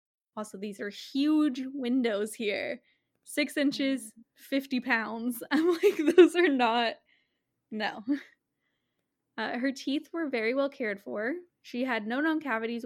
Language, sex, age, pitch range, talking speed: English, female, 10-29, 215-280 Hz, 135 wpm